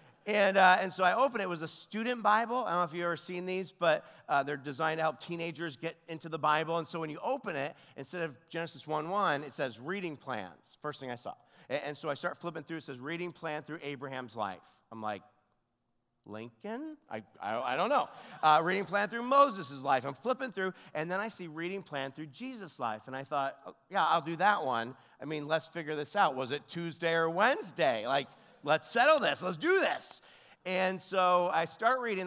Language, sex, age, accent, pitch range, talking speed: English, male, 50-69, American, 135-175 Hz, 225 wpm